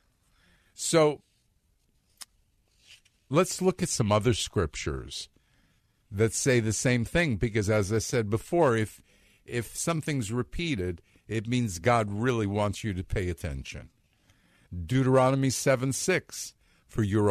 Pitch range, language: 100-130 Hz, English